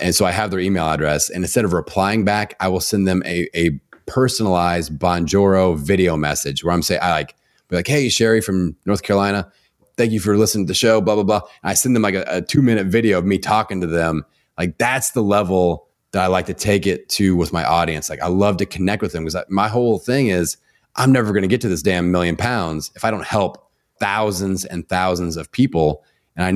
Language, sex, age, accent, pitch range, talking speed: English, male, 30-49, American, 85-105 Hz, 235 wpm